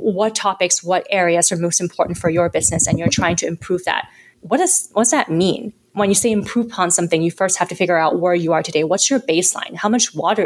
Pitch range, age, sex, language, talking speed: 175-220 Hz, 20-39, female, English, 245 wpm